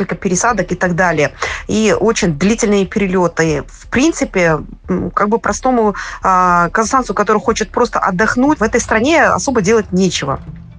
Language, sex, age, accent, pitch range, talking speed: Russian, female, 20-39, native, 185-230 Hz, 140 wpm